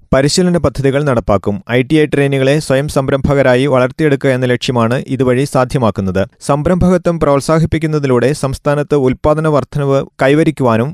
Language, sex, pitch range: Malayalam, male, 125-150 Hz